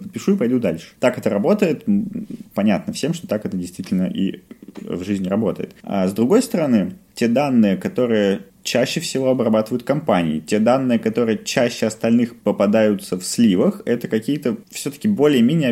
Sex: male